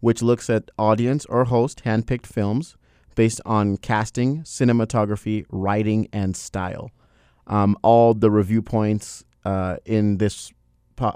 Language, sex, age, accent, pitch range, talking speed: English, male, 30-49, American, 95-115 Hz, 130 wpm